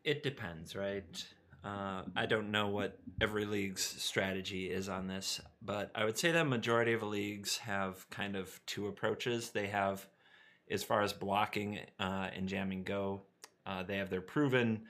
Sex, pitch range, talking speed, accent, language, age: male, 95-110 Hz, 170 wpm, American, English, 30-49